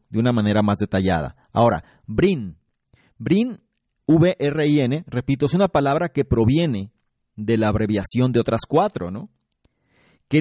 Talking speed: 145 wpm